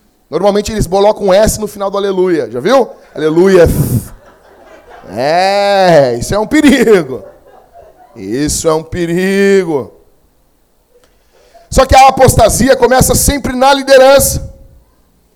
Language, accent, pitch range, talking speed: Portuguese, Brazilian, 200-265 Hz, 115 wpm